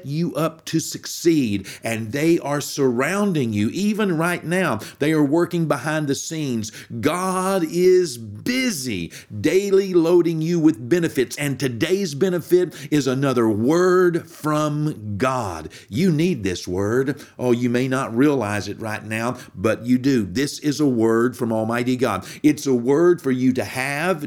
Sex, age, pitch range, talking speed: male, 50-69, 115-160 Hz, 155 wpm